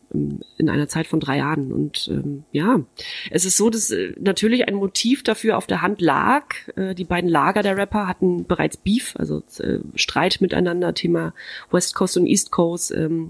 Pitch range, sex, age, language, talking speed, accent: 155-200 Hz, female, 30-49, German, 190 wpm, German